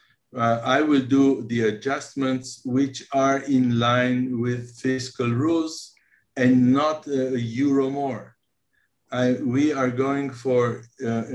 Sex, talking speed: male, 125 wpm